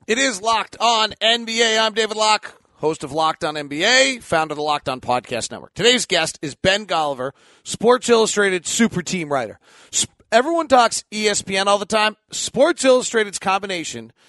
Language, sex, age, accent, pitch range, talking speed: English, male, 40-59, American, 160-210 Hz, 170 wpm